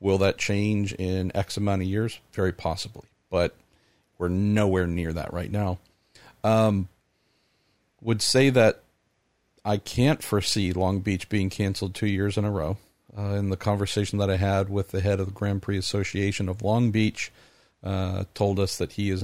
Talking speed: 180 wpm